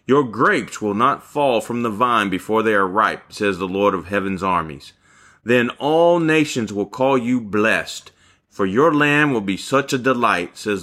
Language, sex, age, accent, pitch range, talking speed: English, male, 30-49, American, 100-135 Hz, 190 wpm